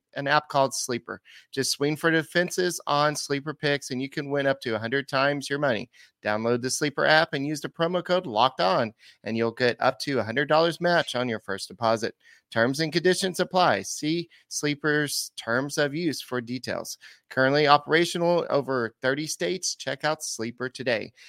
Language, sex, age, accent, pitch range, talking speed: English, male, 30-49, American, 120-150 Hz, 180 wpm